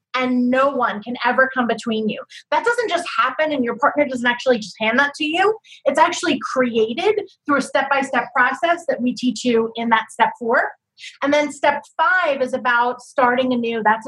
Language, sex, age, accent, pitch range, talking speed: English, female, 30-49, American, 240-290 Hz, 195 wpm